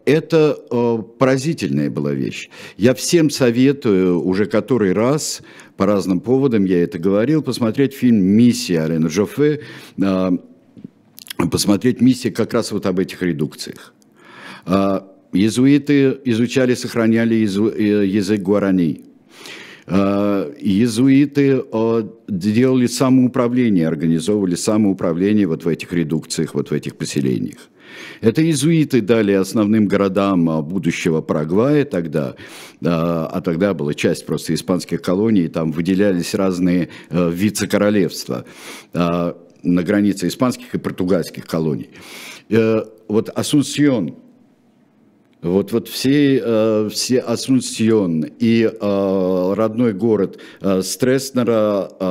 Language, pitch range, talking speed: Russian, 90-125 Hz, 95 wpm